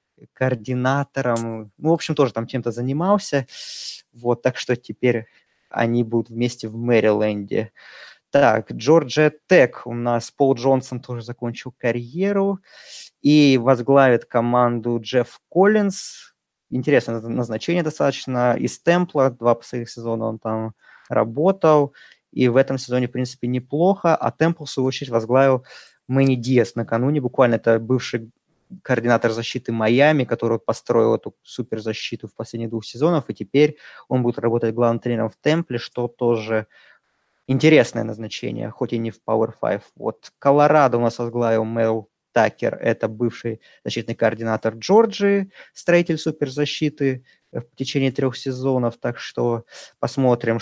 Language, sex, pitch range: Russian, male, 115-140 Hz